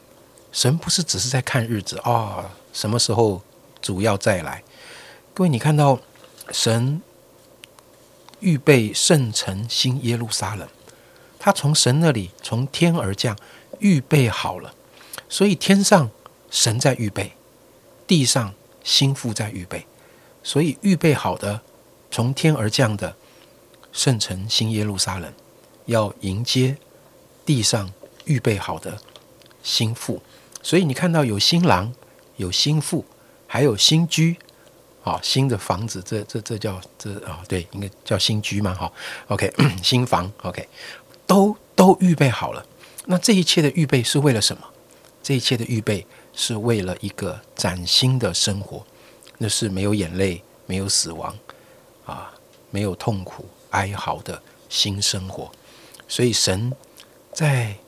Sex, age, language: male, 50-69, Chinese